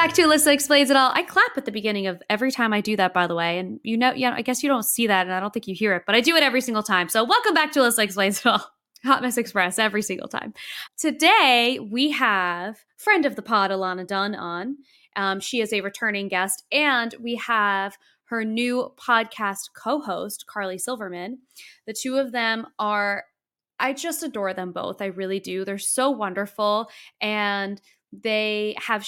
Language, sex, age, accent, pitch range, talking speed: English, female, 10-29, American, 200-265 Hz, 210 wpm